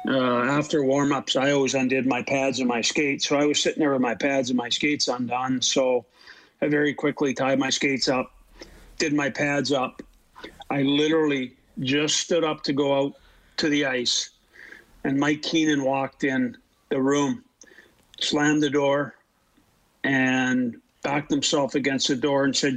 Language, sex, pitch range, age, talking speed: English, male, 130-145 Hz, 50-69, 170 wpm